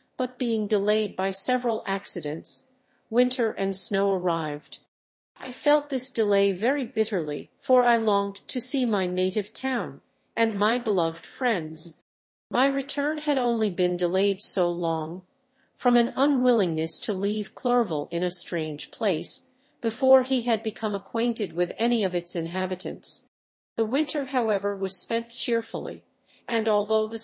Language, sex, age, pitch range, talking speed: English, female, 50-69, 180-250 Hz, 145 wpm